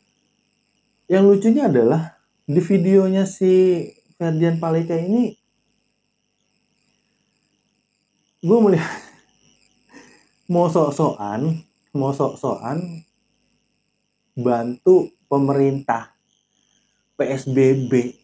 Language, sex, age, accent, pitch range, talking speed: Indonesian, male, 30-49, native, 140-220 Hz, 55 wpm